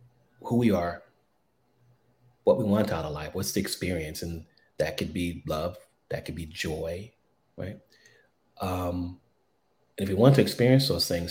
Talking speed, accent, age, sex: 165 wpm, American, 30-49, male